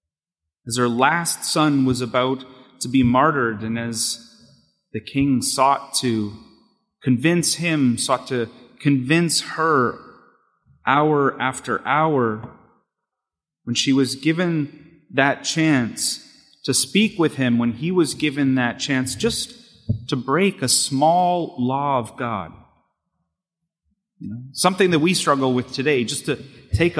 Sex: male